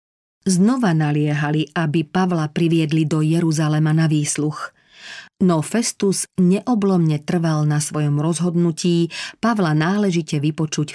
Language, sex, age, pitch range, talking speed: Slovak, female, 40-59, 155-185 Hz, 105 wpm